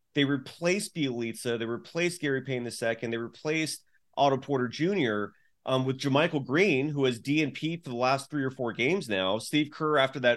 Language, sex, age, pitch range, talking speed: English, male, 30-49, 125-160 Hz, 185 wpm